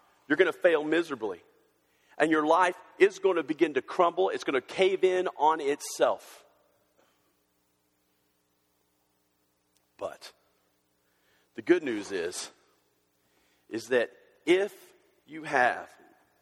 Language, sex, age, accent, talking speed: English, male, 40-59, American, 115 wpm